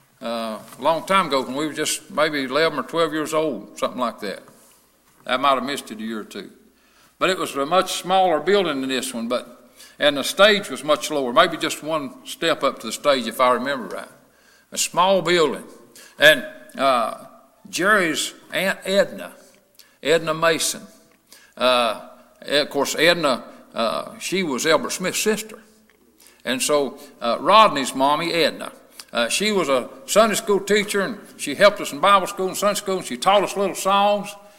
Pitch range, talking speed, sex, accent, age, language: 150-215 Hz, 180 wpm, male, American, 60-79, English